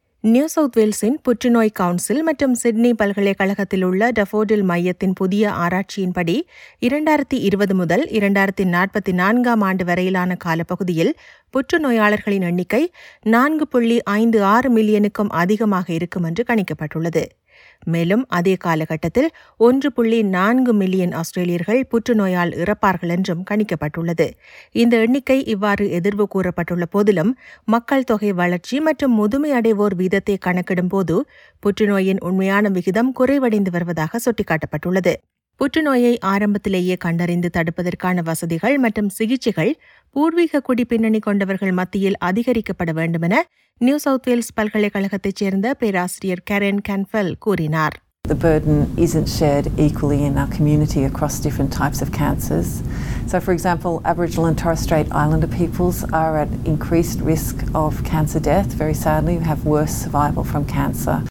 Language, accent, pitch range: Tamil, native, 175-230 Hz